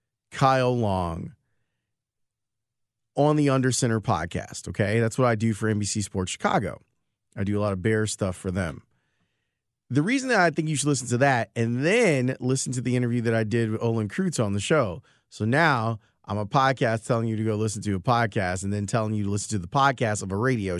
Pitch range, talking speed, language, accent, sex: 110-135 Hz, 215 wpm, English, American, male